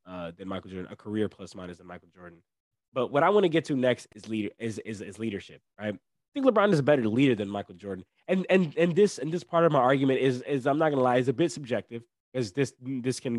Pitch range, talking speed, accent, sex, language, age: 105-140 Hz, 270 wpm, American, male, English, 20-39